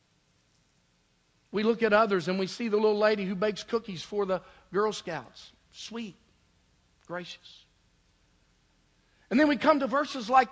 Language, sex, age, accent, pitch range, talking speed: English, male, 50-69, American, 185-260 Hz, 150 wpm